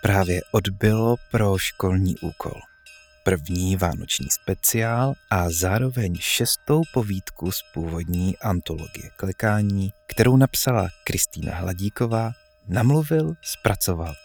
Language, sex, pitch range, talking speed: Czech, male, 90-125 Hz, 95 wpm